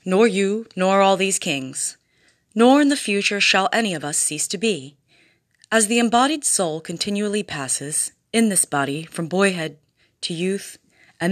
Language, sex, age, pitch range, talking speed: English, female, 30-49, 155-215 Hz, 165 wpm